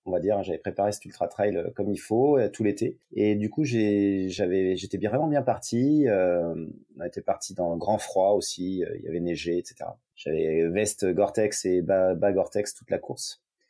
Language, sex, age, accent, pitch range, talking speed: French, male, 30-49, French, 100-120 Hz, 195 wpm